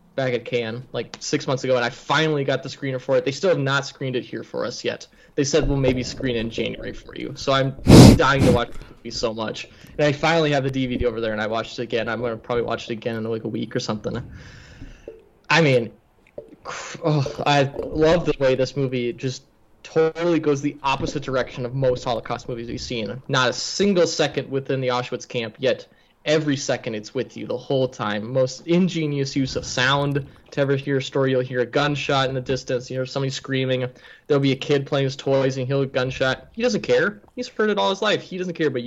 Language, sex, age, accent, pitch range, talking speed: English, male, 20-39, American, 125-150 Hz, 235 wpm